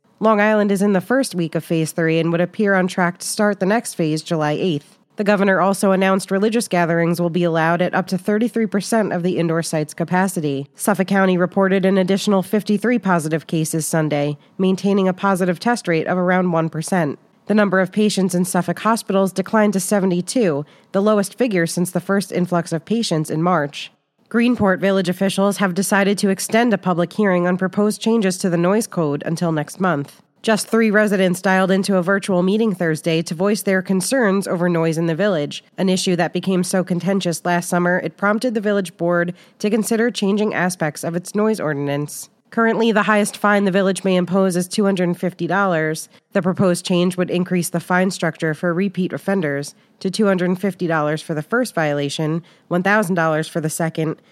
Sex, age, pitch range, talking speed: female, 30-49, 170-200 Hz, 190 wpm